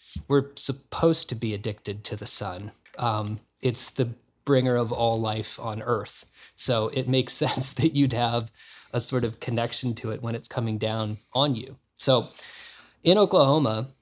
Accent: American